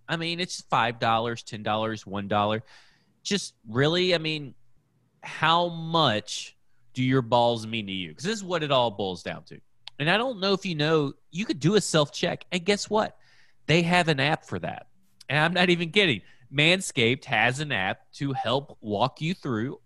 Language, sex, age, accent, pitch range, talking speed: English, male, 30-49, American, 120-165 Hz, 185 wpm